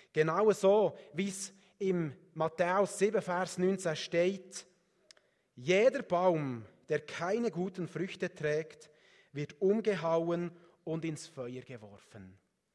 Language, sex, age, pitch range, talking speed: German, male, 30-49, 160-210 Hz, 110 wpm